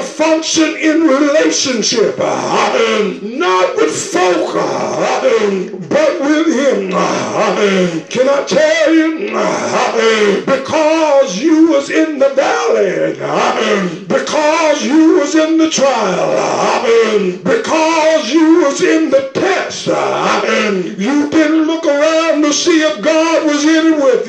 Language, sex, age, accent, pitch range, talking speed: English, male, 60-79, American, 270-320 Hz, 105 wpm